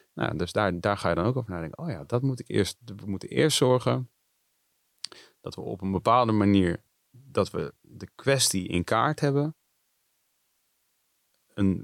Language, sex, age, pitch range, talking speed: Dutch, male, 30-49, 95-125 Hz, 145 wpm